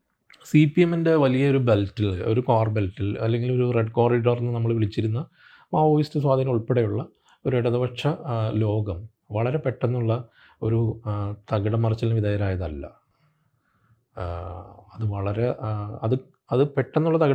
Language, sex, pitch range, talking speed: English, male, 105-125 Hz, 60 wpm